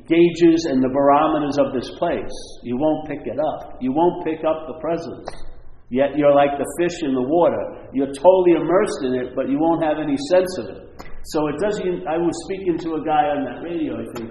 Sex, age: male, 50-69